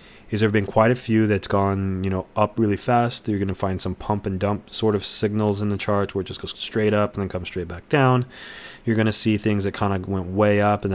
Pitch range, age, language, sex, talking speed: 95-110 Hz, 20-39, English, male, 275 wpm